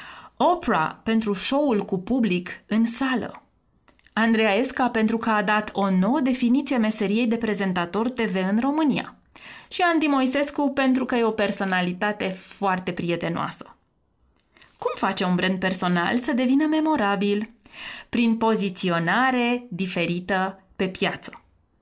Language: Romanian